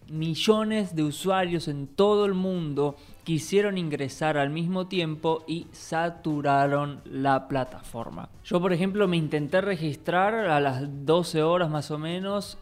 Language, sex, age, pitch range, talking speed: Spanish, male, 20-39, 145-185 Hz, 140 wpm